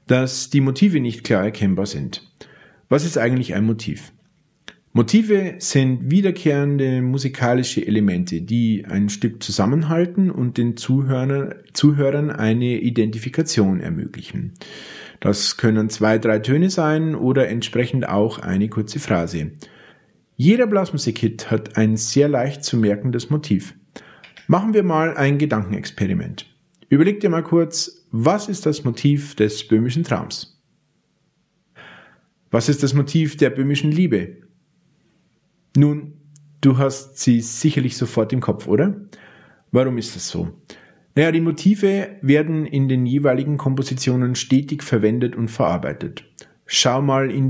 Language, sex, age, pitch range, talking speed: German, male, 40-59, 115-155 Hz, 125 wpm